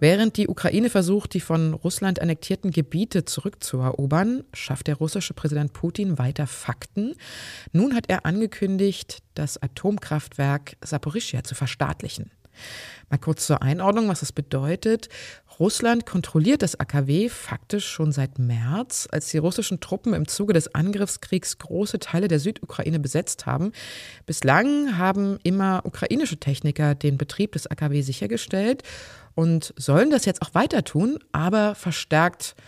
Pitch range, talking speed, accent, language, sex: 145-195 Hz, 135 wpm, German, German, female